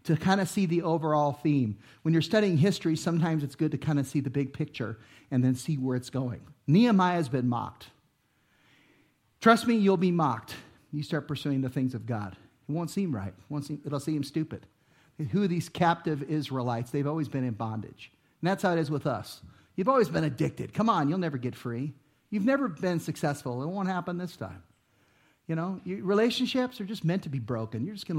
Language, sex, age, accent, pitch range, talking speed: English, male, 50-69, American, 130-170 Hz, 205 wpm